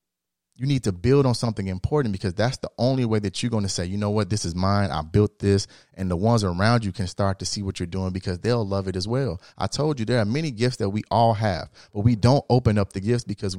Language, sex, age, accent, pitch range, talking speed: English, male, 30-49, American, 100-130 Hz, 280 wpm